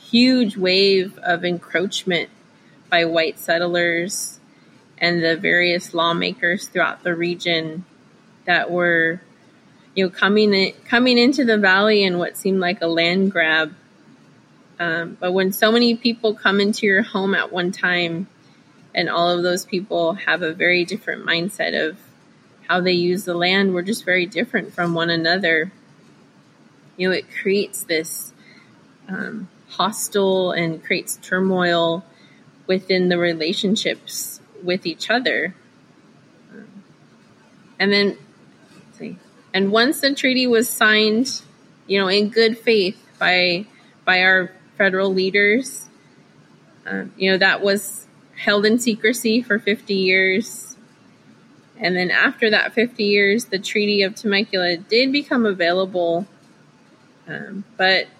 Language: English